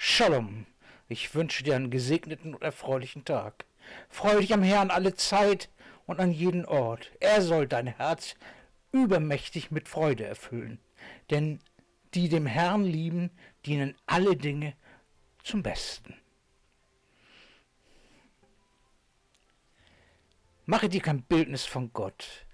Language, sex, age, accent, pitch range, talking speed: German, male, 60-79, German, 135-195 Hz, 115 wpm